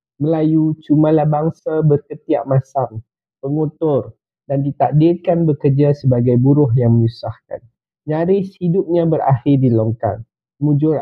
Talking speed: 105 wpm